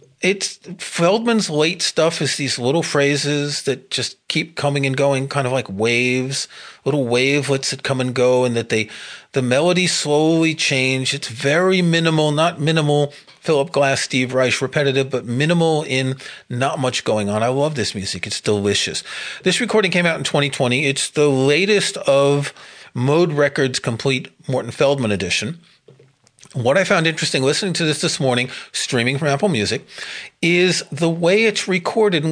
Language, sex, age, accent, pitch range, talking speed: English, male, 40-59, American, 135-175 Hz, 165 wpm